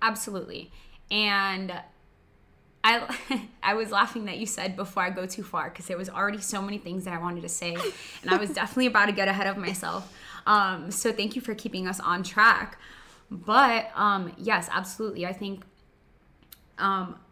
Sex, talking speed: female, 180 wpm